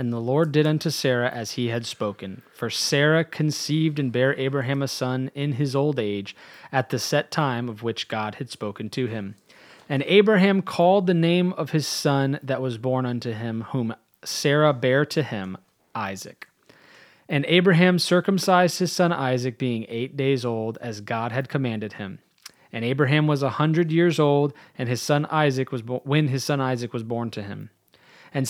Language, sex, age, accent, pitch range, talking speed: English, male, 30-49, American, 120-155 Hz, 185 wpm